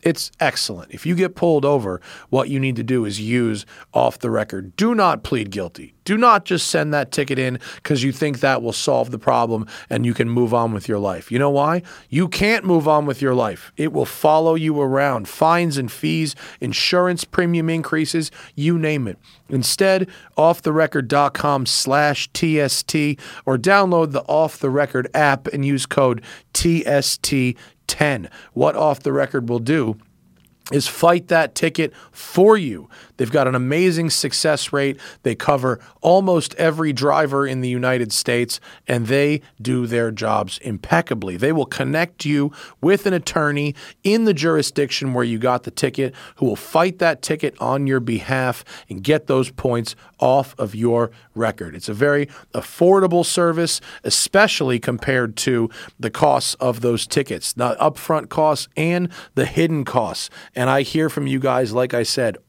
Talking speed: 170 wpm